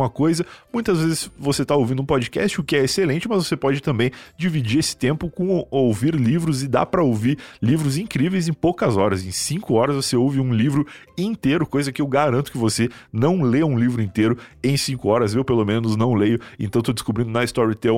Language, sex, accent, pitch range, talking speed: Portuguese, male, Brazilian, 115-150 Hz, 210 wpm